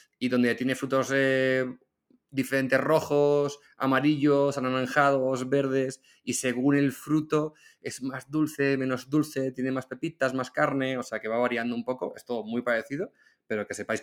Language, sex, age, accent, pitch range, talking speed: English, male, 20-39, Spanish, 115-135 Hz, 165 wpm